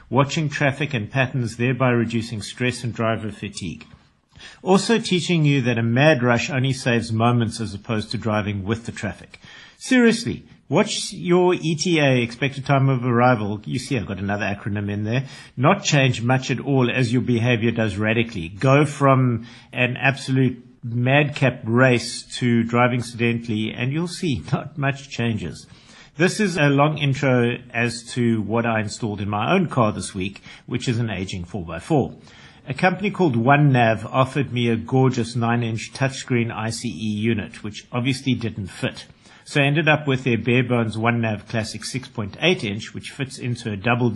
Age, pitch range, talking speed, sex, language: 50-69, 115-135 Hz, 165 wpm, male, English